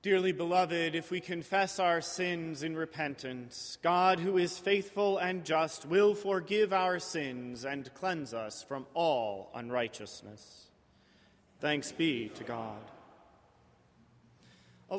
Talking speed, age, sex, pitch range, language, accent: 120 wpm, 30-49, male, 140-210 Hz, English, American